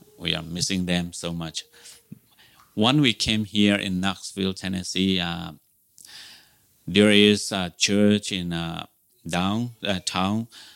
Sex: male